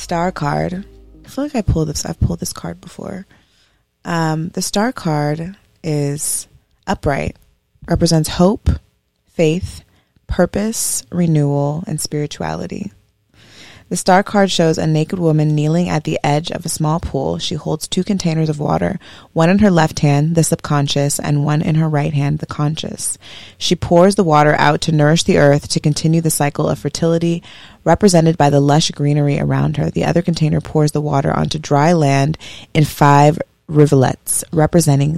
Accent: American